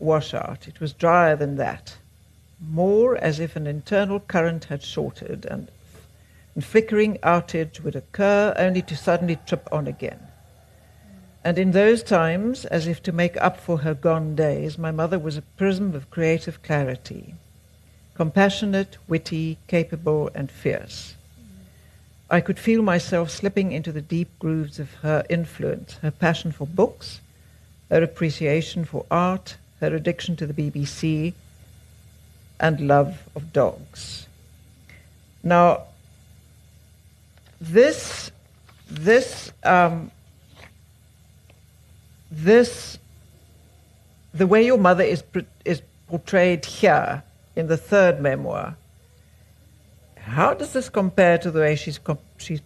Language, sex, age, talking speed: English, female, 60-79, 125 wpm